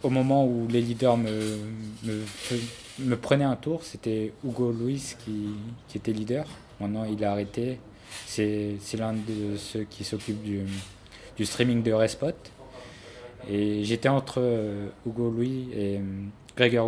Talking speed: 150 wpm